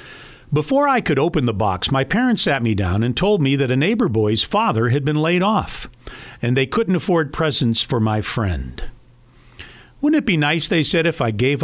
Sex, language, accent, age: male, English, American, 50-69